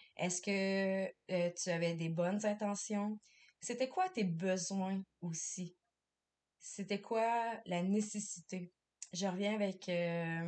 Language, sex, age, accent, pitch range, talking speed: French, female, 20-39, Canadian, 170-200 Hz, 120 wpm